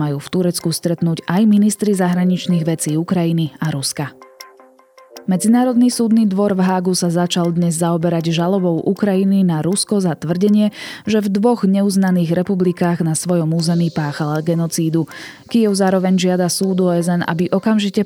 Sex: female